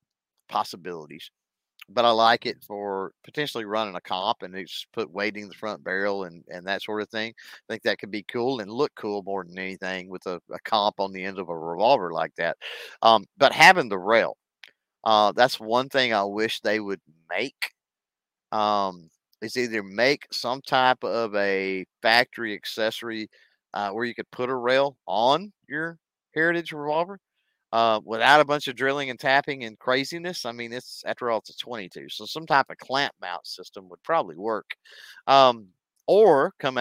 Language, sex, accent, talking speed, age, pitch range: English, male, American, 185 wpm, 50-69, 100-130 Hz